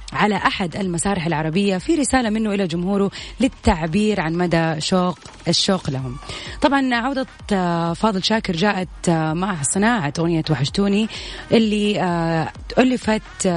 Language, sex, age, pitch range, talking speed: Arabic, female, 30-49, 170-220 Hz, 115 wpm